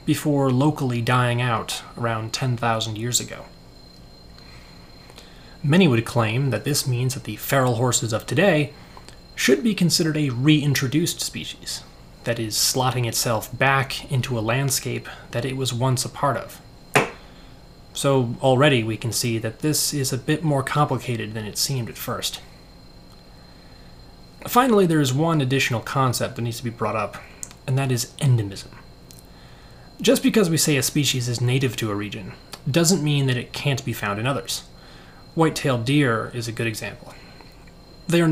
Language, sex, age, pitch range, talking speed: English, male, 30-49, 115-150 Hz, 160 wpm